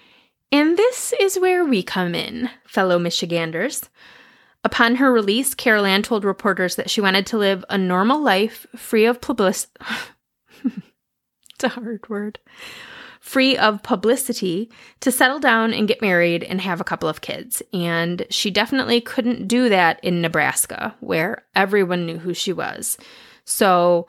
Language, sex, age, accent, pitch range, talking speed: English, female, 30-49, American, 185-245 Hz, 150 wpm